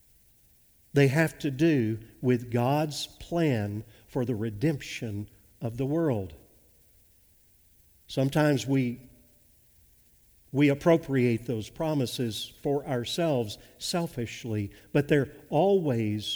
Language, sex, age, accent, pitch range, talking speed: English, male, 50-69, American, 115-155 Hz, 90 wpm